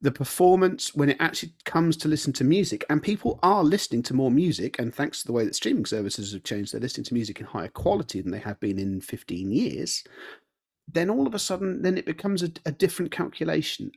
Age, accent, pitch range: 40-59, British, 110-170 Hz